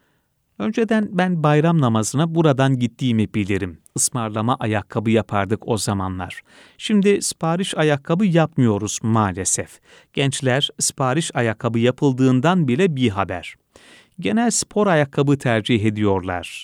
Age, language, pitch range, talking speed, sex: 40-59, Turkish, 115-170 Hz, 105 wpm, male